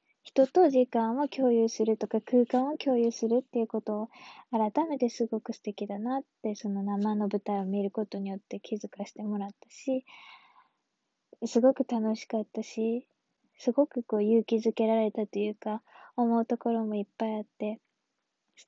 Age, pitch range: 20-39, 215-250 Hz